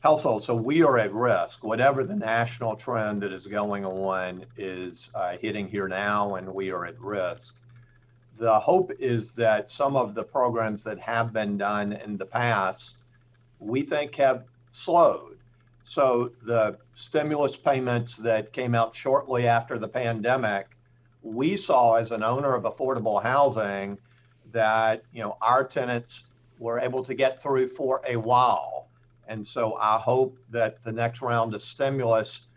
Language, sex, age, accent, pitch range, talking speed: English, male, 50-69, American, 115-130 Hz, 155 wpm